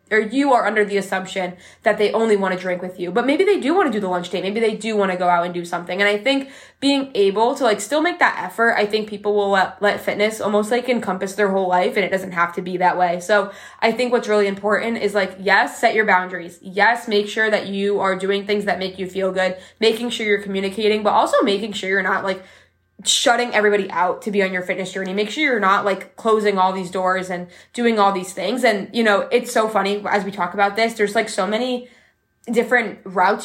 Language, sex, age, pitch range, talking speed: English, female, 20-39, 190-230 Hz, 255 wpm